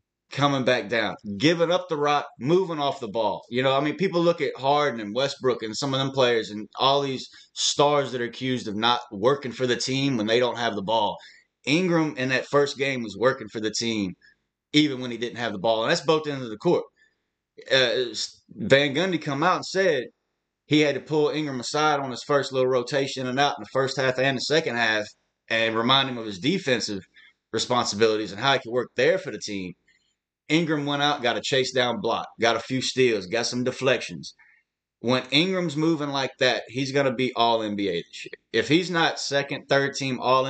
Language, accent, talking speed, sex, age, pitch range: English, American, 220 wpm, male, 30-49, 115-150 Hz